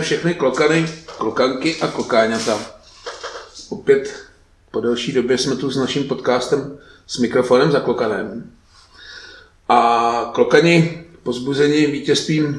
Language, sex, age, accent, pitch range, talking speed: Czech, male, 40-59, native, 110-145 Hz, 105 wpm